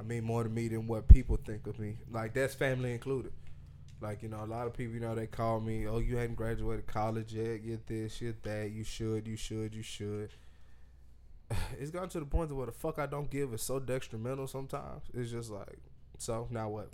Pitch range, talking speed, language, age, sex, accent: 105-125 Hz, 235 wpm, English, 20-39, male, American